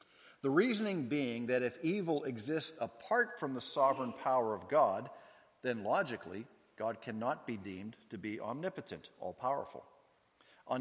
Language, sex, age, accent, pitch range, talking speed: English, male, 50-69, American, 115-145 Hz, 140 wpm